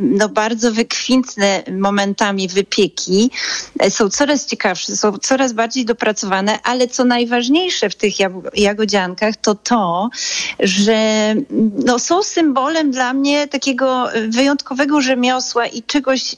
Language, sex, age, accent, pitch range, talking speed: Polish, female, 40-59, native, 205-255 Hz, 105 wpm